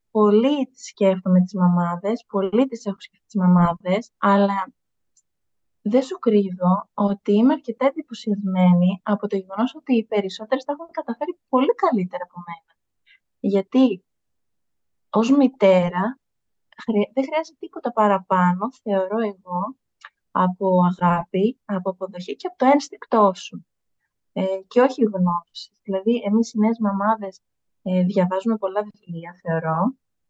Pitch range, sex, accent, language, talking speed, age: 185-240 Hz, female, native, Greek, 120 wpm, 30-49